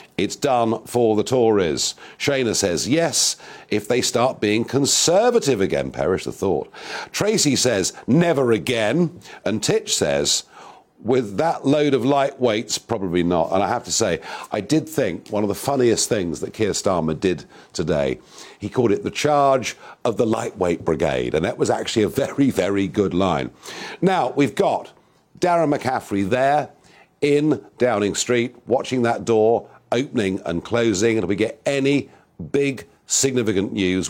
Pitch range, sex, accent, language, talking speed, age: 95-140 Hz, male, British, English, 160 wpm, 50-69